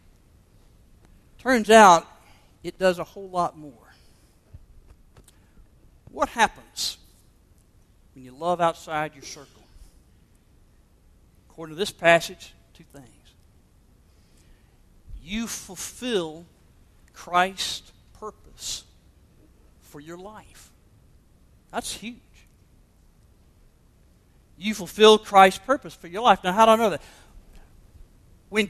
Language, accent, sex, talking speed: English, American, male, 95 wpm